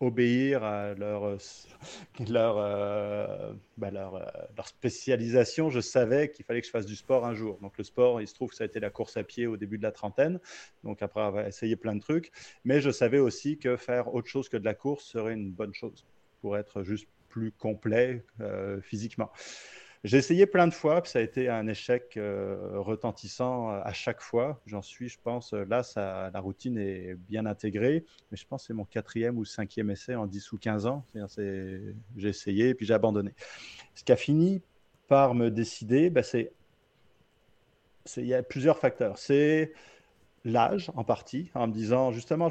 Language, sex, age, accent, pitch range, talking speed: French, male, 30-49, French, 105-130 Hz, 200 wpm